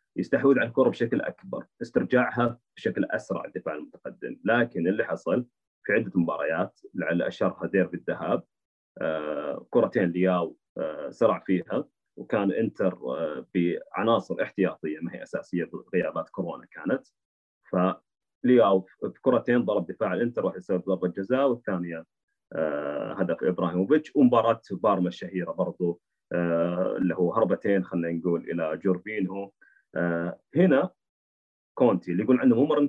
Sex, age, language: male, 30-49, Arabic